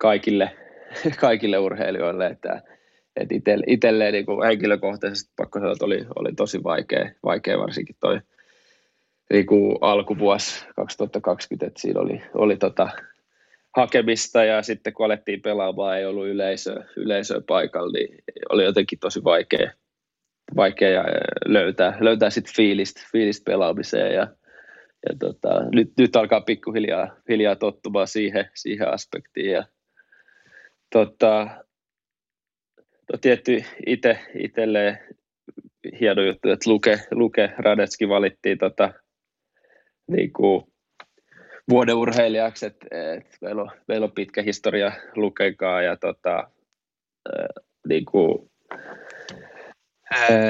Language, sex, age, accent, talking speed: Finnish, male, 20-39, native, 100 wpm